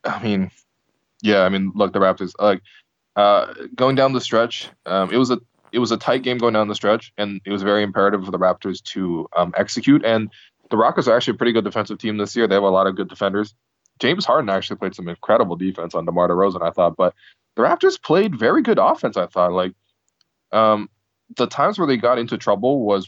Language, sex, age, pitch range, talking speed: English, male, 20-39, 95-110 Hz, 230 wpm